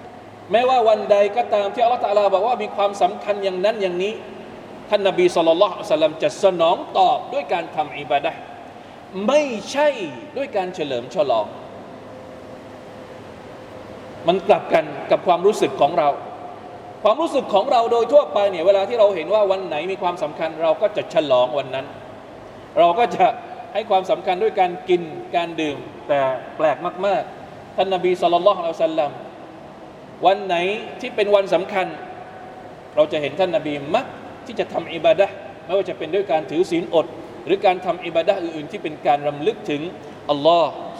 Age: 20-39